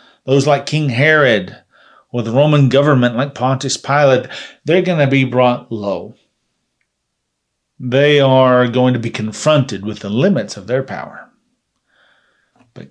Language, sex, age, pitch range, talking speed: English, male, 40-59, 115-155 Hz, 140 wpm